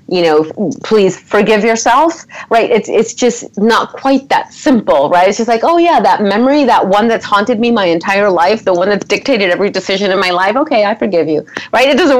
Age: 30-49